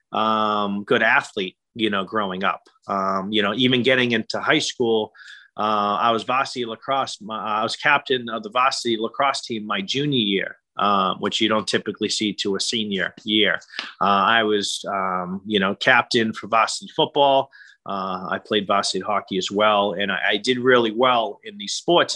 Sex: male